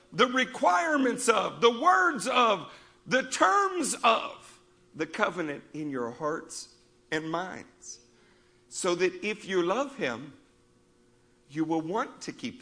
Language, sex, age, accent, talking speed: English, male, 50-69, American, 130 wpm